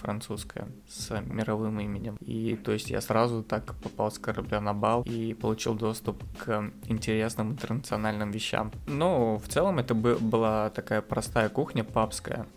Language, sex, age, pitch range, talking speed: Russian, male, 20-39, 110-120 Hz, 150 wpm